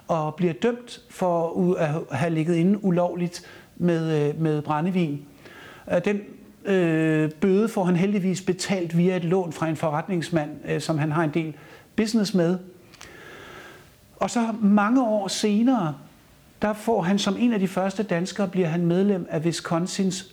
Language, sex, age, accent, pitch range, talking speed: Danish, male, 60-79, native, 150-185 Hz, 155 wpm